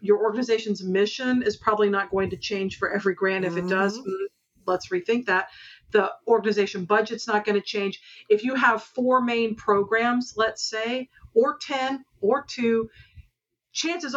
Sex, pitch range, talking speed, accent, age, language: female, 195-230 Hz, 160 wpm, American, 50-69, English